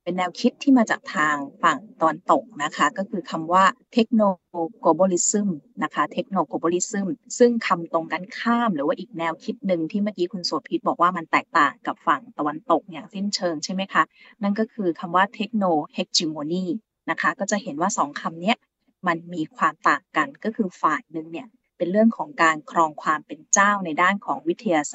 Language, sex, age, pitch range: Thai, female, 20-39, 170-220 Hz